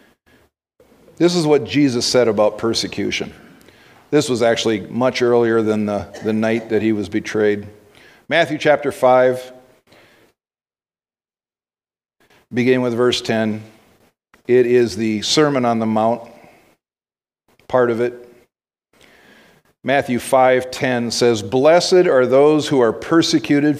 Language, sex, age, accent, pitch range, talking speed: English, male, 50-69, American, 120-160 Hz, 115 wpm